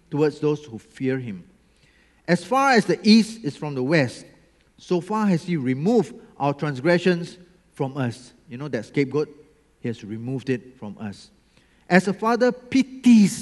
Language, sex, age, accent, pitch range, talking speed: English, male, 40-59, Malaysian, 130-185 Hz, 165 wpm